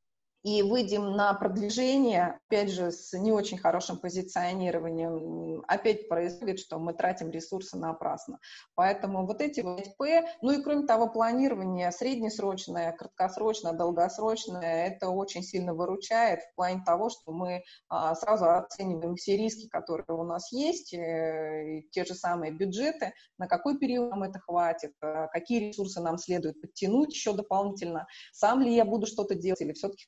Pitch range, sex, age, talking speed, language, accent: 170-220 Hz, female, 20-39, 145 wpm, Russian, native